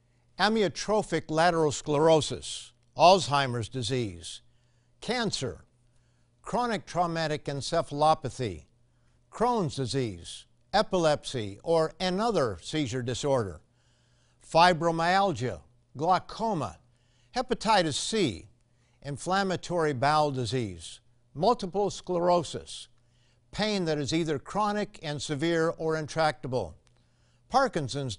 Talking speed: 75 wpm